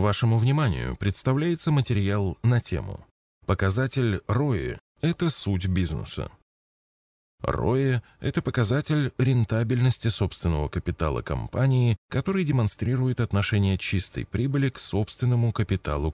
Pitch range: 90-125 Hz